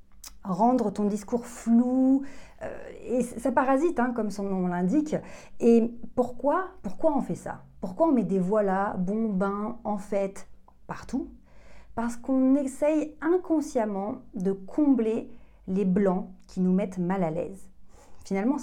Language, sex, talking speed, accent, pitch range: French, female, 140 wpm, French, 195-250 Hz